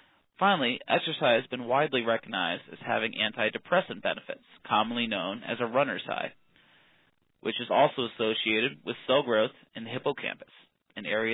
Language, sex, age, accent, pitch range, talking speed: English, male, 30-49, American, 115-145 Hz, 150 wpm